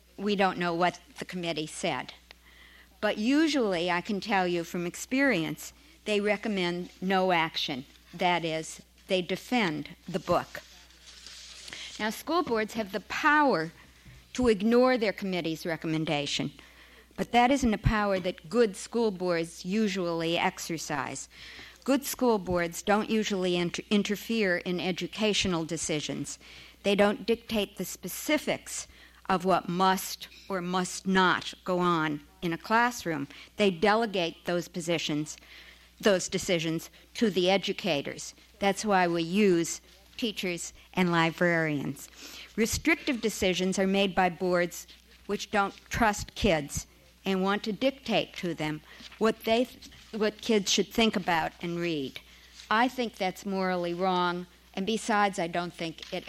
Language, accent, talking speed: English, American, 135 wpm